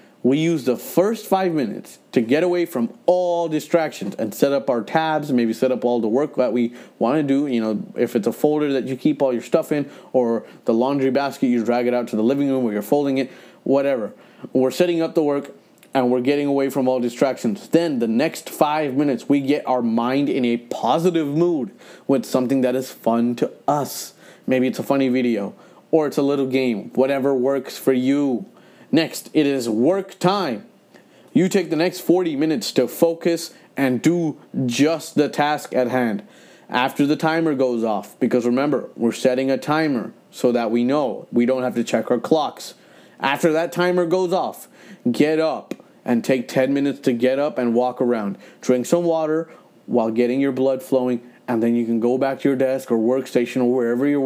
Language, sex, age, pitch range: English, male, 30-49, 125-150 Hz